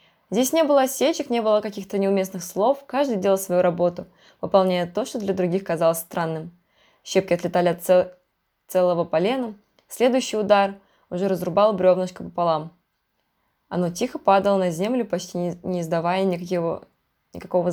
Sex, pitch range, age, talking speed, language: female, 180-230 Hz, 20-39, 140 wpm, Russian